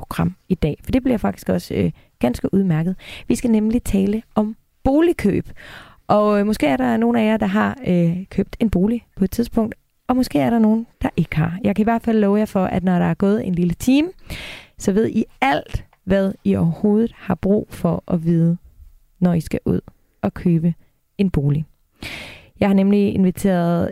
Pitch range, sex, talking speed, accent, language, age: 165-215 Hz, female, 205 wpm, native, Danish, 30-49